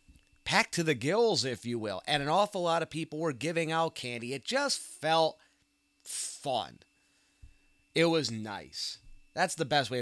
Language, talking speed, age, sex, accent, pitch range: English, 170 wpm, 30-49, male, American, 120-165 Hz